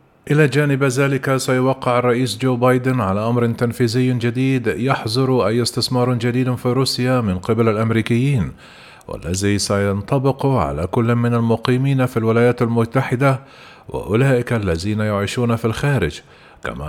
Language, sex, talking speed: Arabic, male, 125 wpm